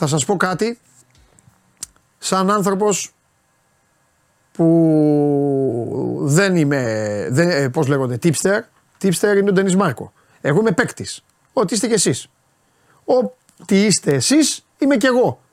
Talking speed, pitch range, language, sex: 115 wpm, 155-235 Hz, Greek, male